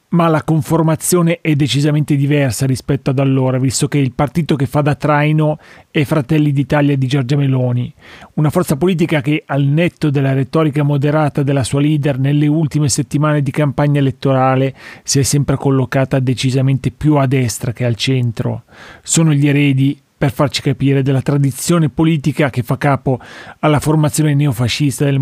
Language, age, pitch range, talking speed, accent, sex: Italian, 30-49, 135-155 Hz, 160 wpm, native, male